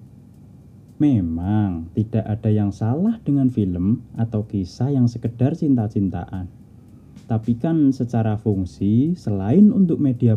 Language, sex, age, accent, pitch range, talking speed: Indonesian, male, 20-39, native, 105-125 Hz, 110 wpm